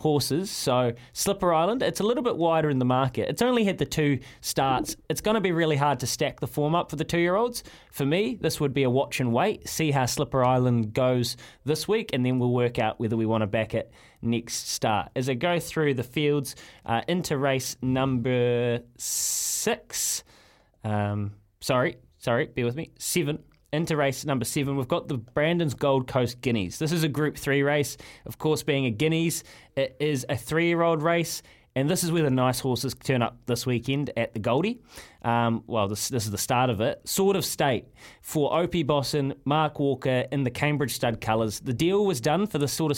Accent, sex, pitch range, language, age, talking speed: Australian, male, 125-160 Hz, English, 20-39, 210 wpm